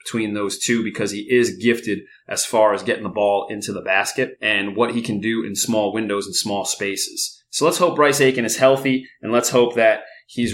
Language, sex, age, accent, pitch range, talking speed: English, male, 30-49, American, 105-125 Hz, 220 wpm